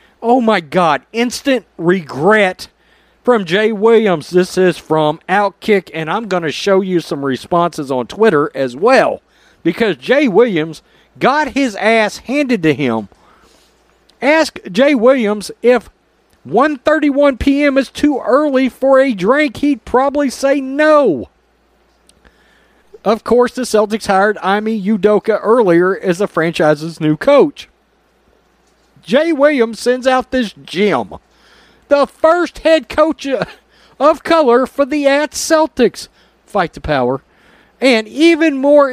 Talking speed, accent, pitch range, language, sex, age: 130 wpm, American, 200-280 Hz, English, male, 40-59